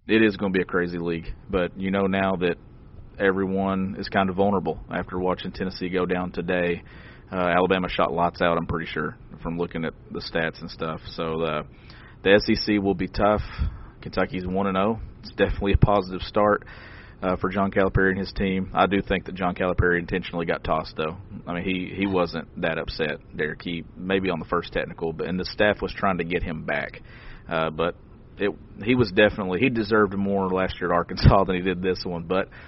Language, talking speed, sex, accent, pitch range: English, 210 wpm, male, American, 90-100 Hz